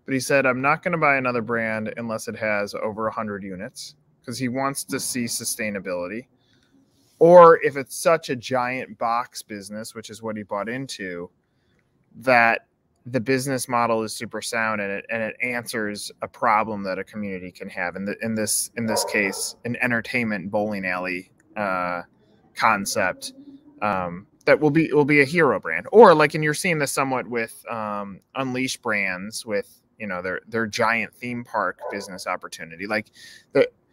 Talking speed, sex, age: 180 wpm, male, 20-39